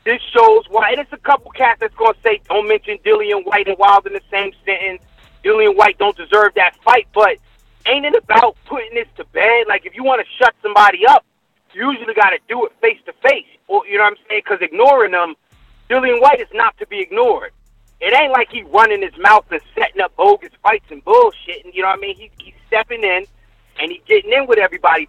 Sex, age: male, 30-49